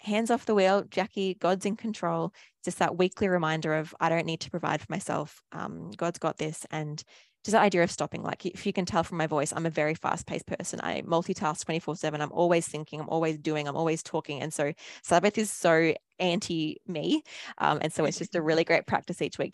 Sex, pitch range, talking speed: female, 155-180 Hz, 230 wpm